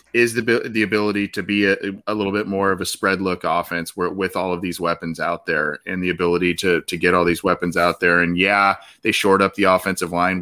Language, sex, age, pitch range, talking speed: English, male, 20-39, 90-105 Hz, 250 wpm